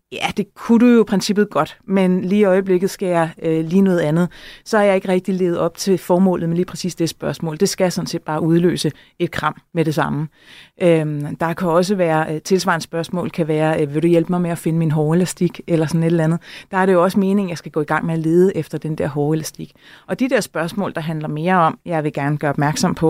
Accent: native